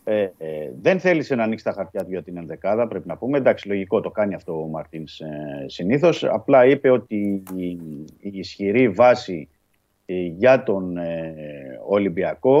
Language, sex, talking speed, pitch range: Greek, male, 165 wpm, 85-110 Hz